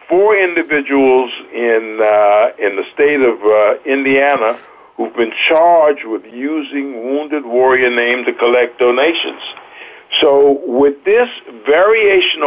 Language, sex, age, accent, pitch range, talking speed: English, male, 60-79, American, 120-155 Hz, 120 wpm